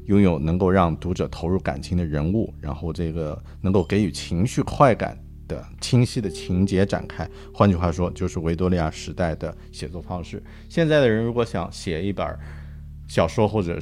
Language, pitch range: Chinese, 85-105 Hz